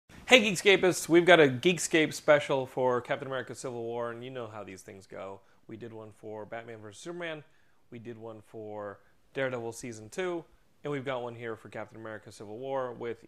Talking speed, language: 200 wpm, English